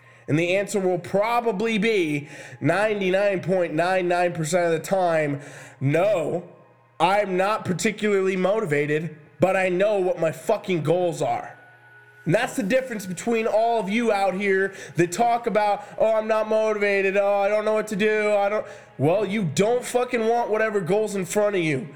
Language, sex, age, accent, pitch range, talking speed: English, male, 20-39, American, 170-220 Hz, 165 wpm